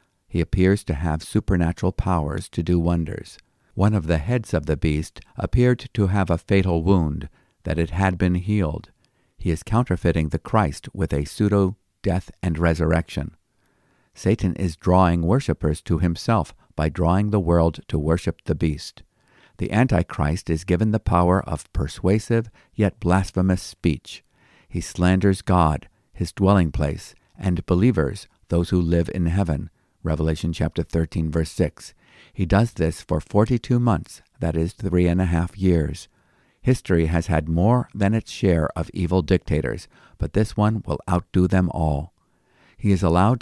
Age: 50-69